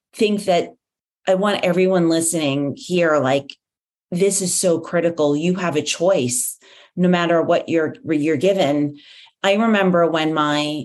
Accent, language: American, English